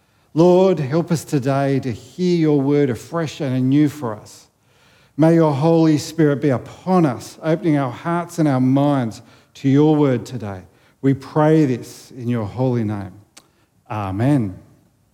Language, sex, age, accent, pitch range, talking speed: English, male, 50-69, Australian, 135-170 Hz, 150 wpm